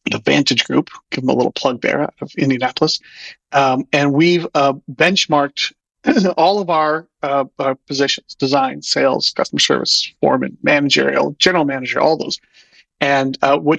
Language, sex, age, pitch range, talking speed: English, male, 40-59, 140-165 Hz, 150 wpm